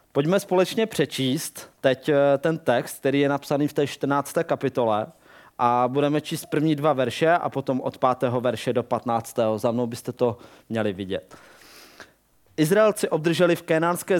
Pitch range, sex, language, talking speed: 130-155 Hz, male, Czech, 150 wpm